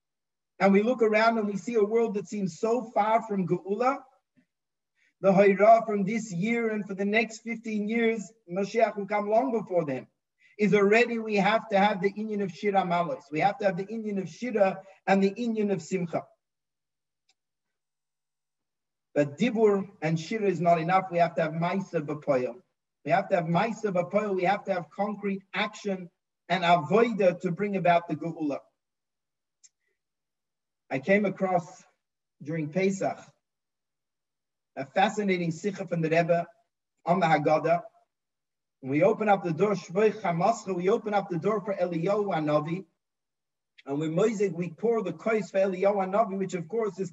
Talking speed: 165 wpm